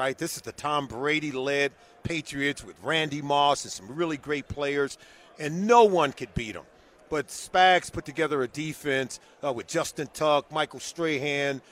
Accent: American